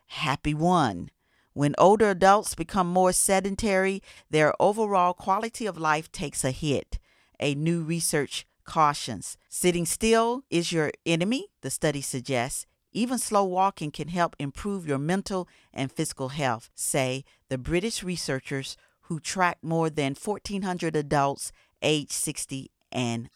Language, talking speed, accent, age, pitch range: English, 135 wpm, American, 40-59, 140-195 Hz